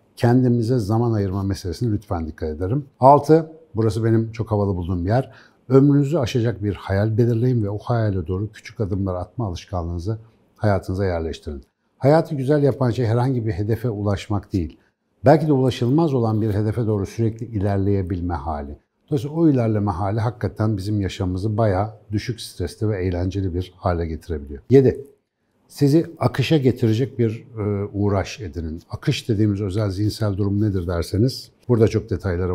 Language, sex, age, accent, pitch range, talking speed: Turkish, male, 60-79, native, 100-120 Hz, 145 wpm